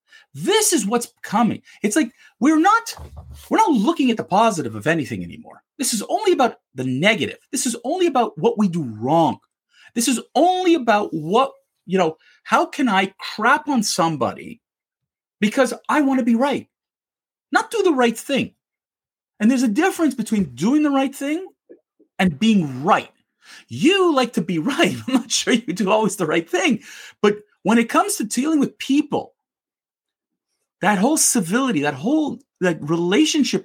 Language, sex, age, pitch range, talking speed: English, male, 40-59, 210-290 Hz, 170 wpm